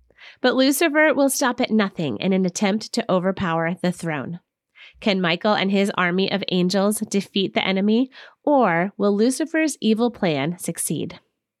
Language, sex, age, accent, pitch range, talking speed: English, female, 30-49, American, 180-235 Hz, 150 wpm